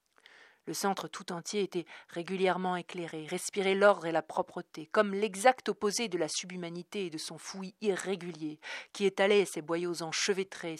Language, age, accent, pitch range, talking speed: French, 40-59, French, 150-190 Hz, 155 wpm